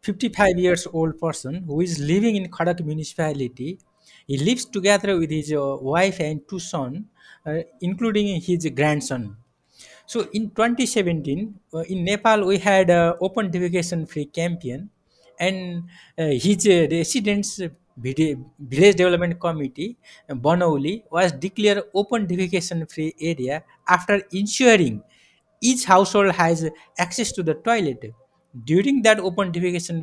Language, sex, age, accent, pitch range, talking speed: English, male, 60-79, Indian, 160-200 Hz, 130 wpm